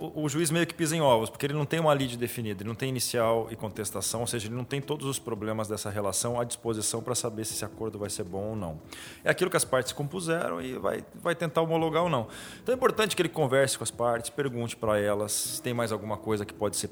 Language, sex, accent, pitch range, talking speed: Portuguese, male, Brazilian, 110-145 Hz, 265 wpm